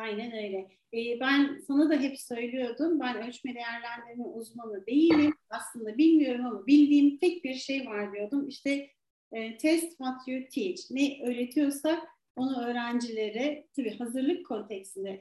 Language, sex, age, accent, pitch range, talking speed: Turkish, female, 40-59, native, 235-315 Hz, 130 wpm